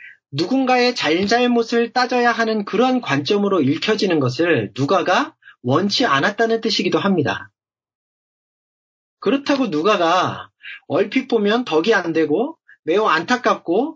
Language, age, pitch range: Korean, 30-49, 160-245 Hz